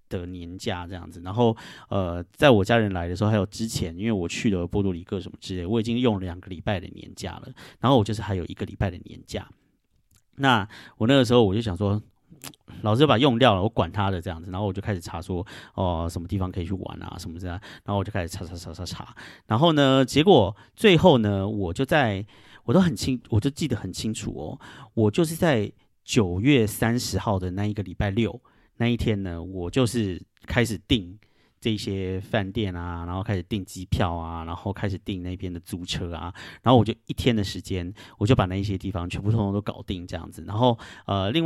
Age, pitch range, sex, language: 30-49, 95-115 Hz, male, Chinese